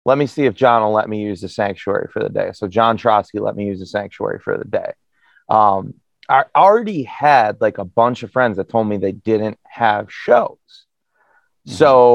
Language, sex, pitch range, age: English, male, 105-125 Hz, 30-49